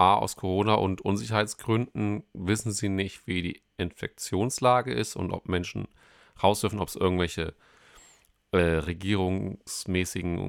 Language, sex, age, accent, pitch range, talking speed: German, male, 30-49, German, 90-105 Hz, 120 wpm